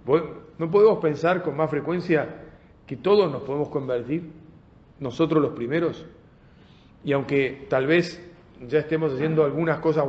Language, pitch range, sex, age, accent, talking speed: Spanish, 135-160 Hz, male, 40-59, Argentinian, 135 wpm